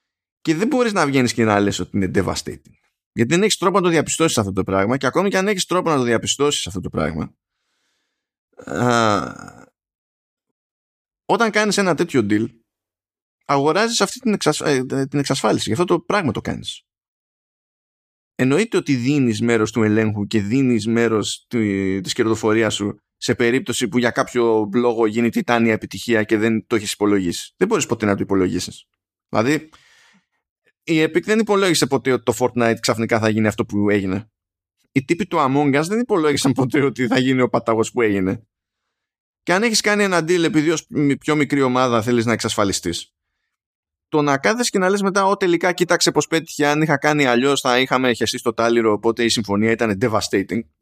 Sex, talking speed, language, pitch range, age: male, 180 wpm, Greek, 110-155 Hz, 20-39